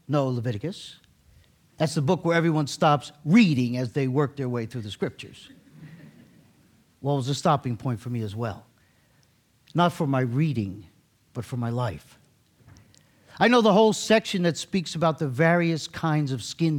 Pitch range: 125-175 Hz